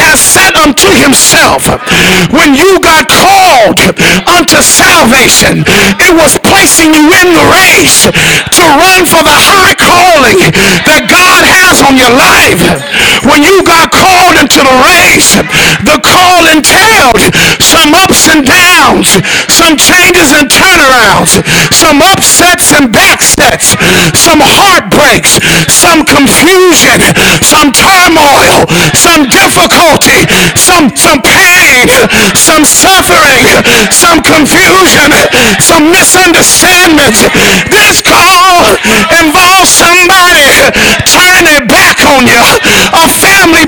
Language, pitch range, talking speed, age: English, 315-365 Hz, 100 wpm, 50-69